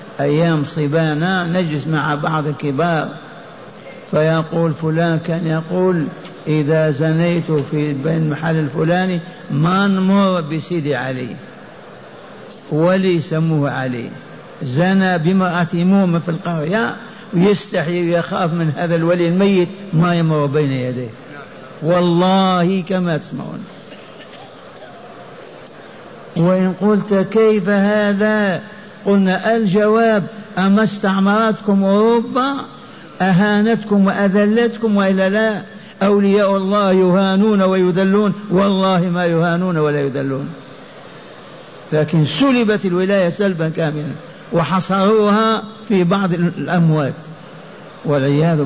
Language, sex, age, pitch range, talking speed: Arabic, male, 60-79, 160-195 Hz, 90 wpm